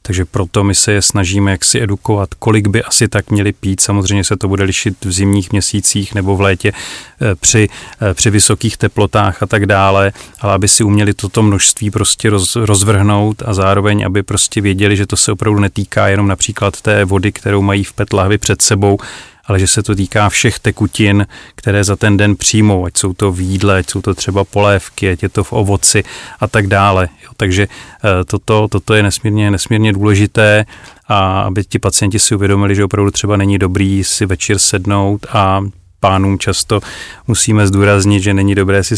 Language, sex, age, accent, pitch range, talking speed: Czech, male, 30-49, native, 95-105 Hz, 185 wpm